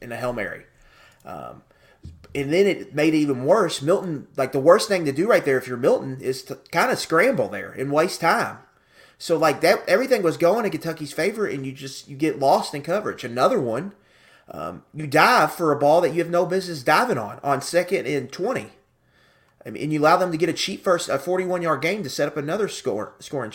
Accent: American